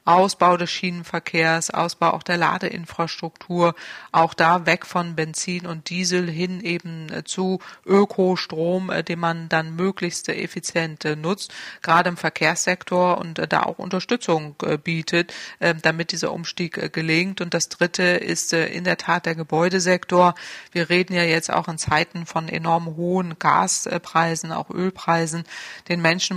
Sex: female